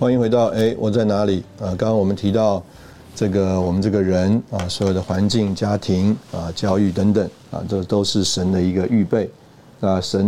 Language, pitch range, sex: Chinese, 90-110 Hz, male